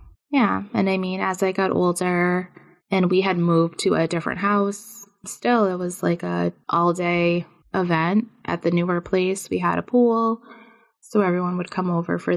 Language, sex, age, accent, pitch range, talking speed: English, female, 20-39, American, 165-190 Hz, 180 wpm